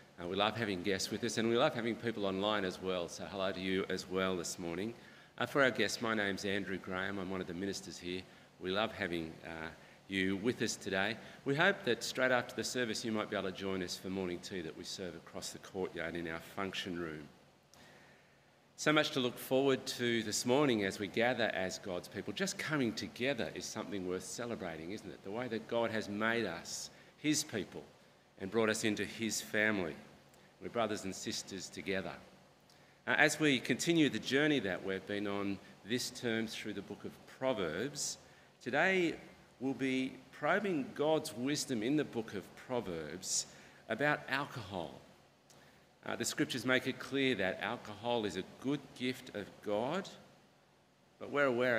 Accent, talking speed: Australian, 190 wpm